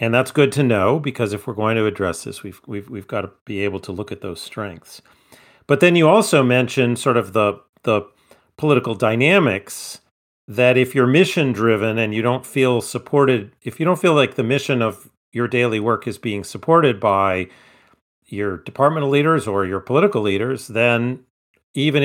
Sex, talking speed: male, 190 wpm